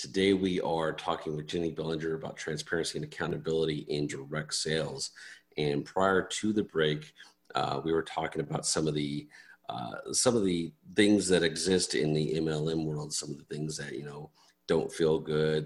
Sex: male